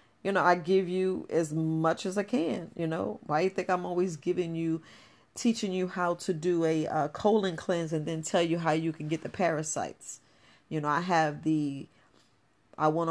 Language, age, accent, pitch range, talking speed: English, 40-59, American, 155-180 Hz, 205 wpm